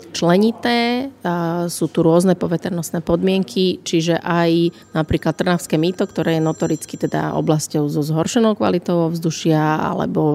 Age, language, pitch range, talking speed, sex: 30-49, Slovak, 160-180 Hz, 120 wpm, female